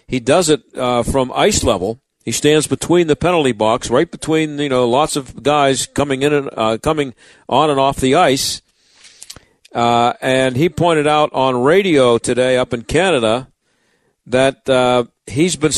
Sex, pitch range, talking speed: male, 130-165 Hz, 170 wpm